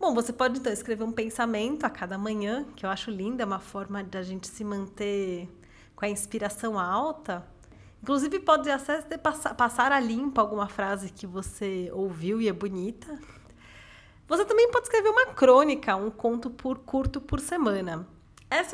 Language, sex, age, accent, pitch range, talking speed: Portuguese, female, 20-39, Brazilian, 205-275 Hz, 175 wpm